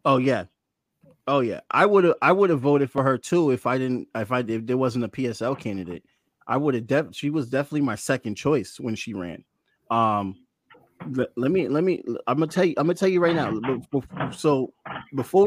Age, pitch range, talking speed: 30-49, 130-175 Hz, 215 wpm